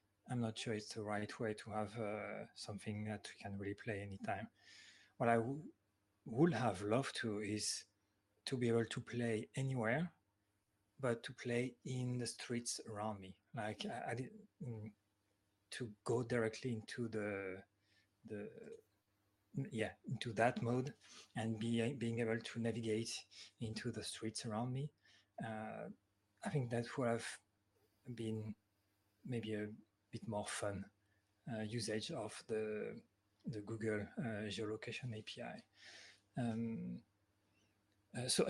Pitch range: 105-120 Hz